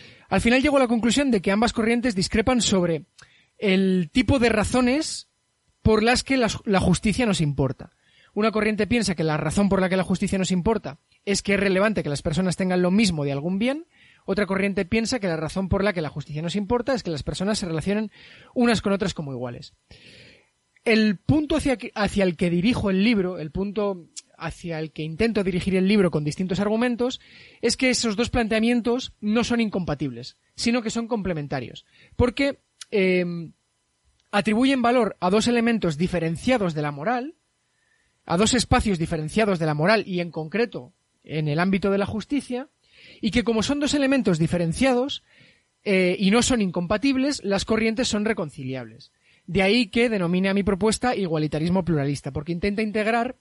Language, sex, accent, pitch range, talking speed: Spanish, male, Spanish, 170-235 Hz, 180 wpm